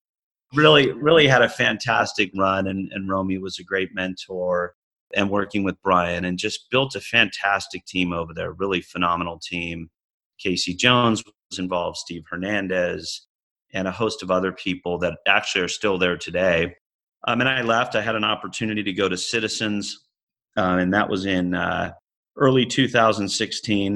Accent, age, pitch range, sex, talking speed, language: American, 30-49, 90-105 Hz, male, 165 wpm, English